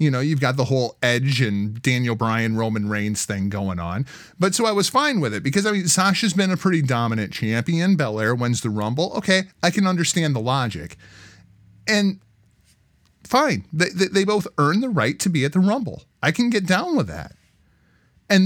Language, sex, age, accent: English, male, 30-49, American